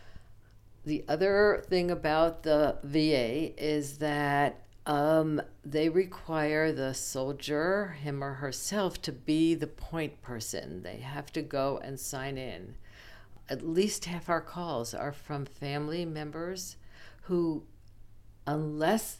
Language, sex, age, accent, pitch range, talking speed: English, female, 50-69, American, 120-160 Hz, 120 wpm